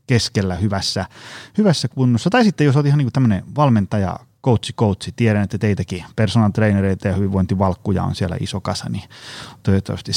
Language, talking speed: Finnish, 160 wpm